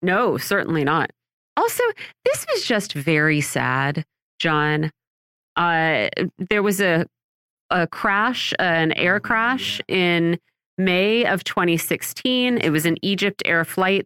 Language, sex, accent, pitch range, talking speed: English, female, American, 150-205 Hz, 130 wpm